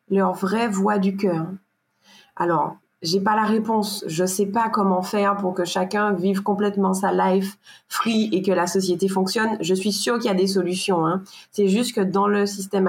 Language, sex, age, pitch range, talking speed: French, female, 20-39, 190-220 Hz, 210 wpm